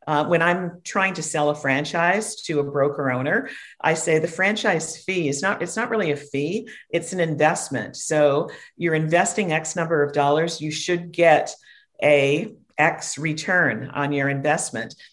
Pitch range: 150-180 Hz